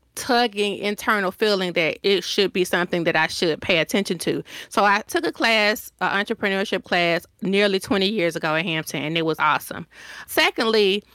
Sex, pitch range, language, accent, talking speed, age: female, 175-220 Hz, English, American, 180 wpm, 30-49